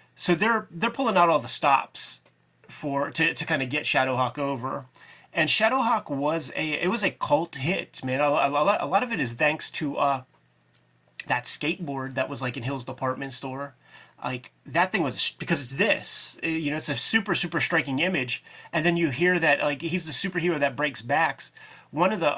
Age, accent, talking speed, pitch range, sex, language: 30-49, American, 200 wpm, 135-155 Hz, male, English